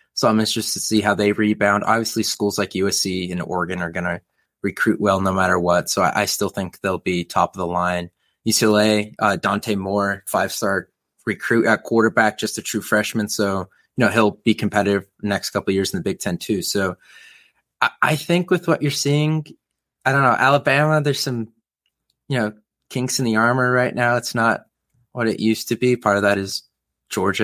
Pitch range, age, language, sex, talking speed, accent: 100-115 Hz, 20-39, English, male, 210 wpm, American